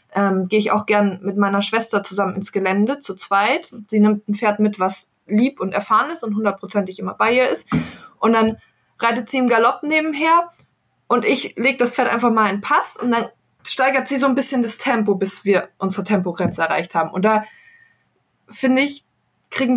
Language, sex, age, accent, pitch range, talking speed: German, female, 20-39, German, 195-235 Hz, 200 wpm